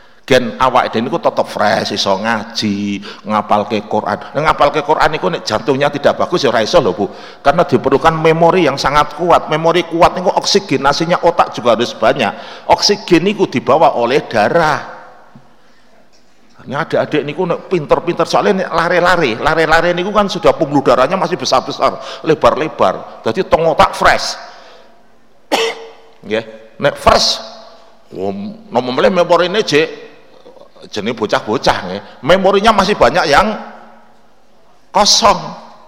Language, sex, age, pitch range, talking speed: Indonesian, male, 50-69, 125-190 Hz, 125 wpm